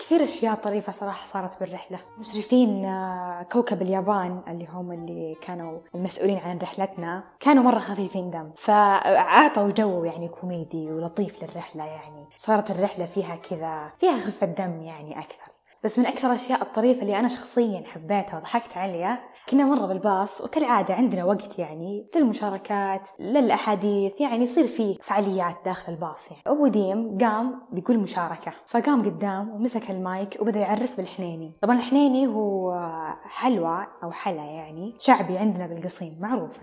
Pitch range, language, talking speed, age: 170-225 Hz, Arabic, 140 wpm, 20-39